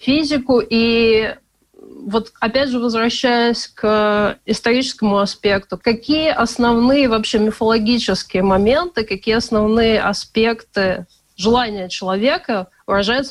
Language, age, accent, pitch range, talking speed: Russian, 20-39, native, 195-235 Hz, 90 wpm